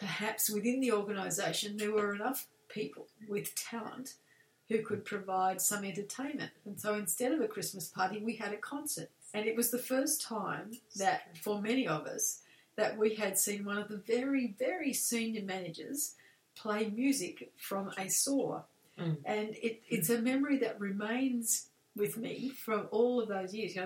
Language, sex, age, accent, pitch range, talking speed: English, female, 40-59, Australian, 200-235 Hz, 170 wpm